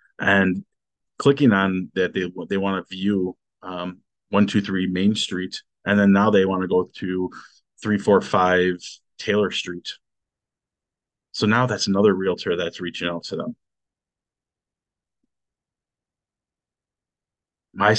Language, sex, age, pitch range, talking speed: English, male, 30-49, 90-100 Hz, 125 wpm